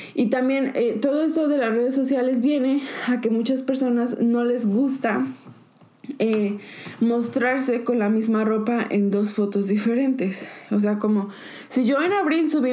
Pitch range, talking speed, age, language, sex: 220-265 Hz, 165 wpm, 20-39, Spanish, female